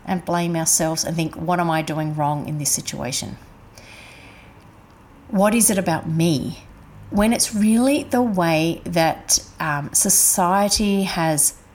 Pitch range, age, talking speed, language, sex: 165-225 Hz, 40-59, 140 wpm, English, female